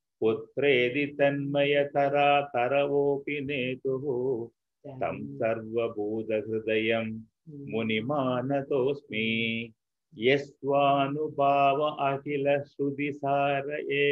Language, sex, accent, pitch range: Tamil, male, native, 115-145 Hz